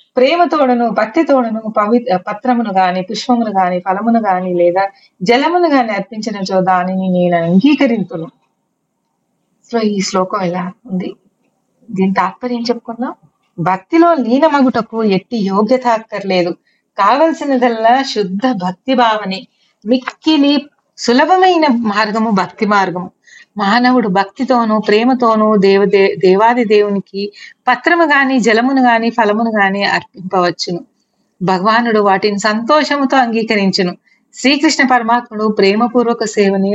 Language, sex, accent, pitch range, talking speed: Telugu, female, native, 195-250 Hz, 100 wpm